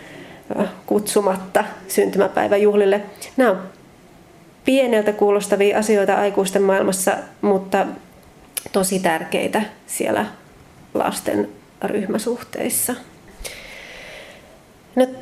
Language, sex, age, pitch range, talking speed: Finnish, female, 30-49, 190-220 Hz, 60 wpm